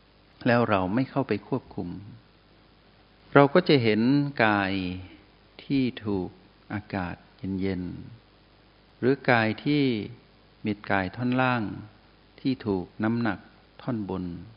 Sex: male